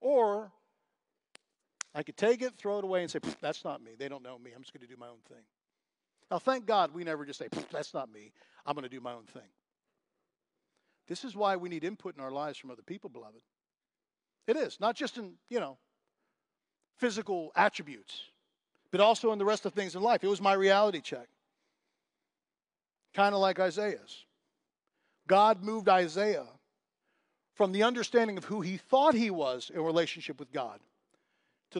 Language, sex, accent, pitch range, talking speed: English, male, American, 150-215 Hz, 185 wpm